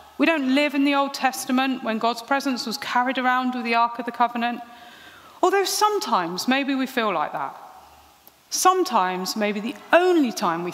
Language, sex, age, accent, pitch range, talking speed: English, female, 40-59, British, 215-315 Hz, 180 wpm